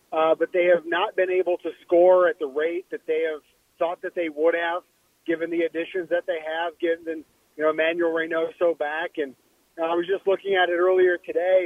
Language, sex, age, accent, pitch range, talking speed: English, male, 30-49, American, 160-180 Hz, 210 wpm